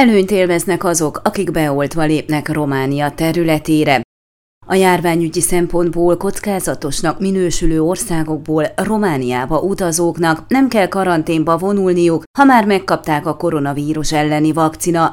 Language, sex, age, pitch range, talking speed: Hungarian, female, 30-49, 155-195 Hz, 105 wpm